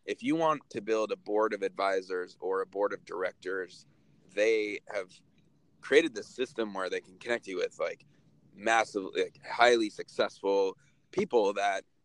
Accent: American